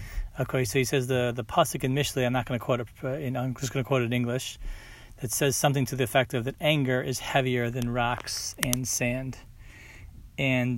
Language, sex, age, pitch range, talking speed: English, male, 30-49, 120-140 Hz, 215 wpm